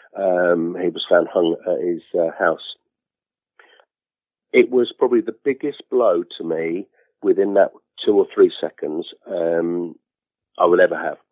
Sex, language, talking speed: male, English, 150 wpm